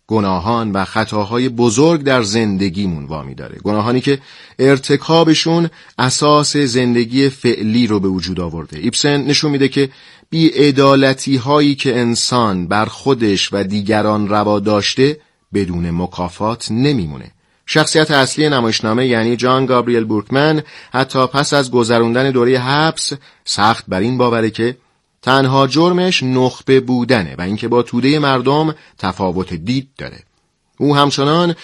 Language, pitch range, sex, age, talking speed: Persian, 110-140 Hz, male, 30-49, 130 wpm